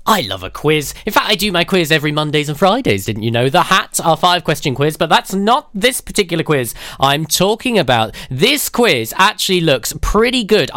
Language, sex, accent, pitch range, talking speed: English, male, British, 145-195 Hz, 205 wpm